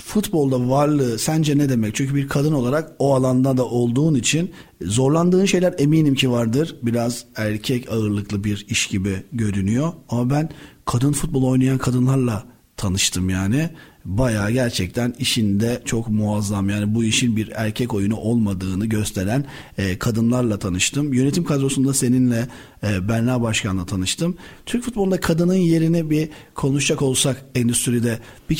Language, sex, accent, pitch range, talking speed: Turkish, male, native, 115-140 Hz, 135 wpm